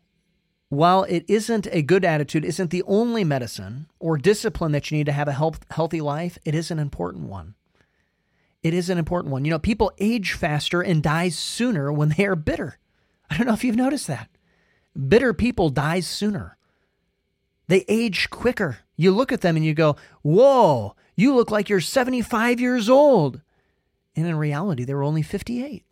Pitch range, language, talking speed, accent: 135-190 Hz, English, 180 wpm, American